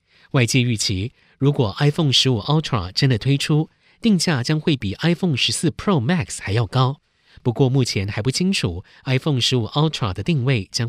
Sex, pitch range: male, 110-150 Hz